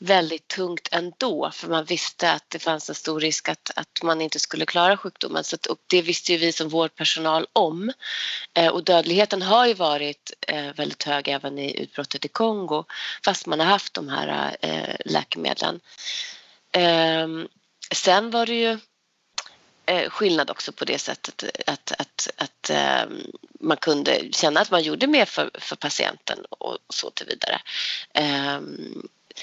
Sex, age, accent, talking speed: female, 30-49, native, 160 wpm